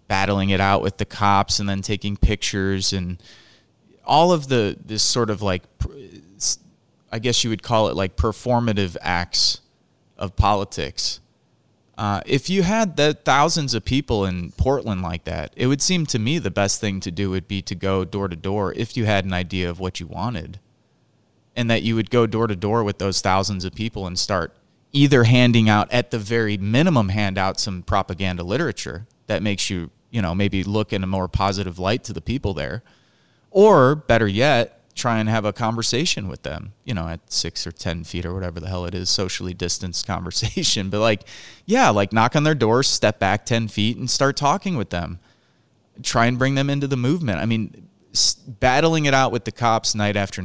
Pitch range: 95-120 Hz